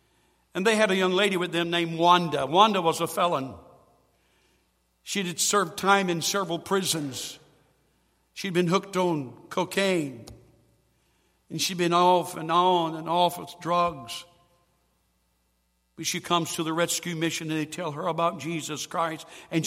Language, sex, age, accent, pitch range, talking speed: English, male, 60-79, American, 150-185 Hz, 160 wpm